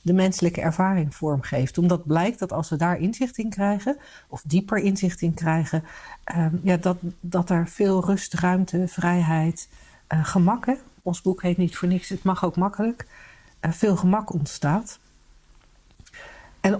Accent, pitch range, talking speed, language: Dutch, 170-210 Hz, 155 wpm, Dutch